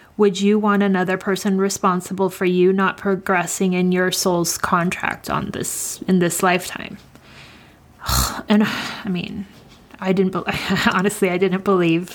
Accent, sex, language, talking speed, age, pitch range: American, female, English, 145 wpm, 30-49, 185-205 Hz